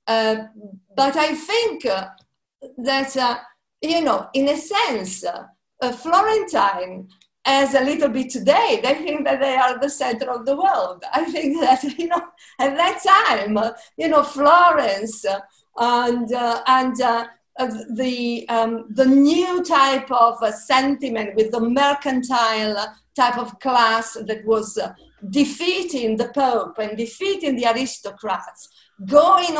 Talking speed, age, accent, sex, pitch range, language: 135 wpm, 50-69, Italian, female, 230-295 Hz, English